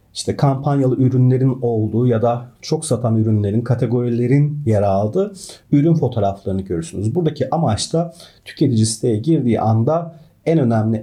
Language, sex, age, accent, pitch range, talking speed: Turkish, male, 40-59, native, 110-145 Hz, 130 wpm